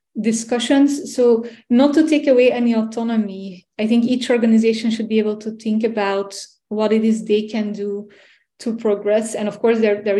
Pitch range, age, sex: 210-230 Hz, 20-39, female